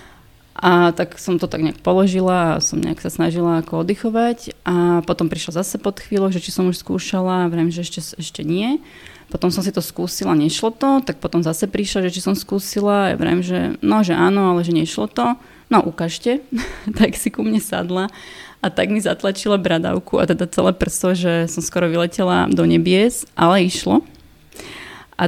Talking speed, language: 185 wpm, Slovak